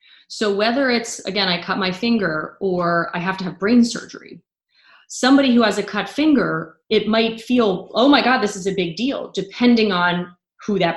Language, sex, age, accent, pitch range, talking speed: English, female, 20-39, American, 180-235 Hz, 195 wpm